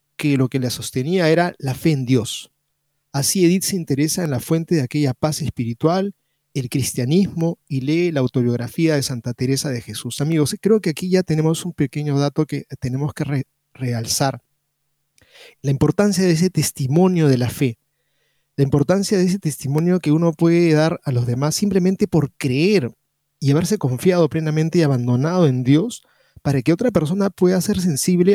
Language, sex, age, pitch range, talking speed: Spanish, male, 30-49, 135-170 Hz, 180 wpm